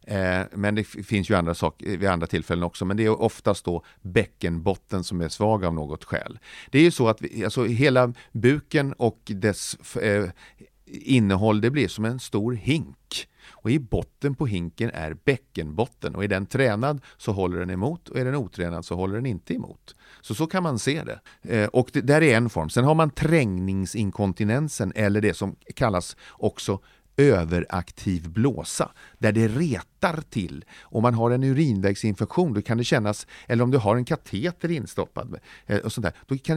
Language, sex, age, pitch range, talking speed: English, male, 40-59, 95-140 Hz, 185 wpm